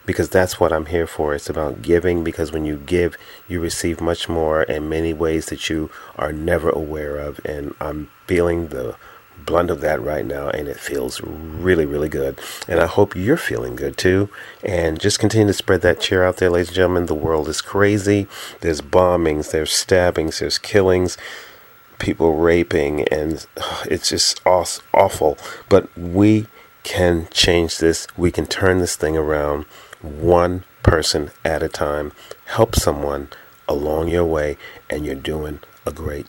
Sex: male